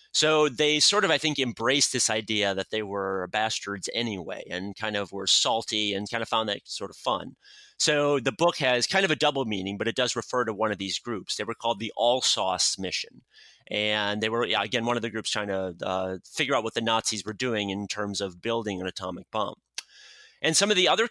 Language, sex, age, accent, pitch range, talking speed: English, male, 30-49, American, 105-130 Hz, 230 wpm